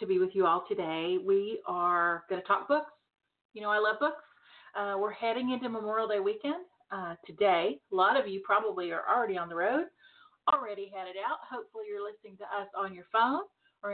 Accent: American